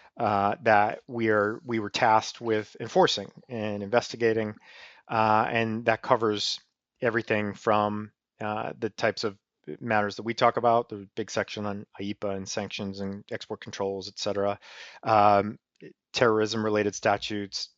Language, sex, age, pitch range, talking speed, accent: English, male, 30-49, 105-125 Hz, 135 wpm, American